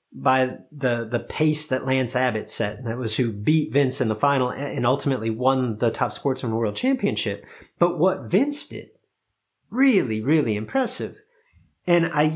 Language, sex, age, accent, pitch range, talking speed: English, male, 30-49, American, 115-165 Hz, 165 wpm